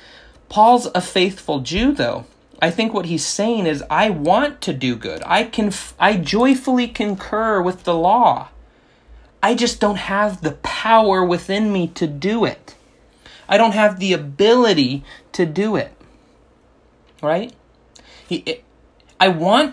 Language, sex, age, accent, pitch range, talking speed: English, male, 30-49, American, 140-200 Hz, 145 wpm